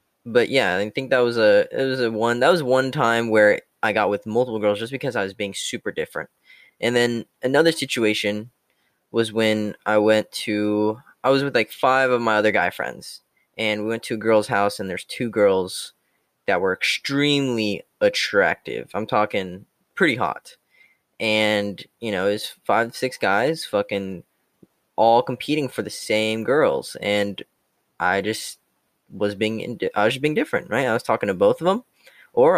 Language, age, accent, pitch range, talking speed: English, 10-29, American, 105-130 Hz, 180 wpm